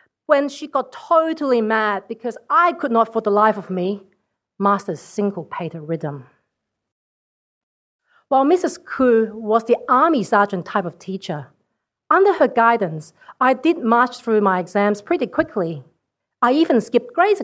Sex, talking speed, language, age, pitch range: female, 150 wpm, English, 40-59, 190-270 Hz